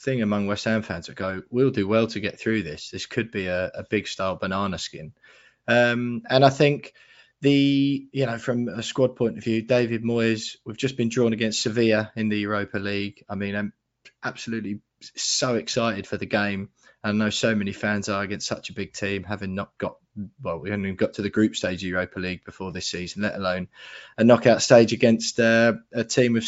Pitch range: 105-125 Hz